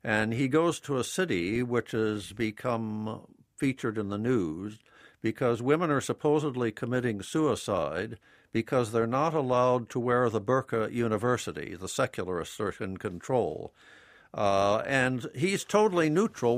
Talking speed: 140 wpm